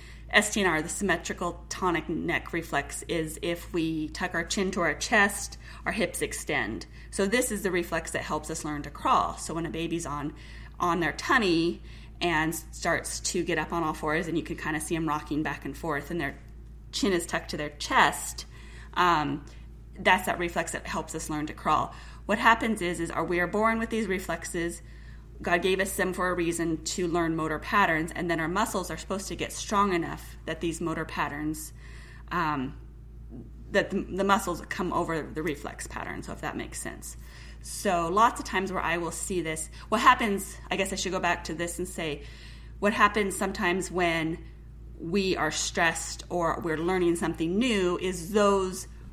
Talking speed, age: 195 wpm, 20-39